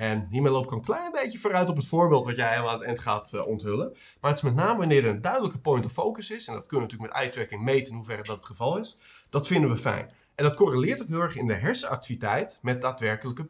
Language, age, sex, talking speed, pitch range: Dutch, 30-49, male, 270 wpm, 110-165 Hz